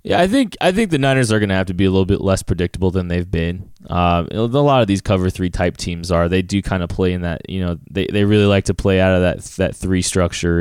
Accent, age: American, 20-39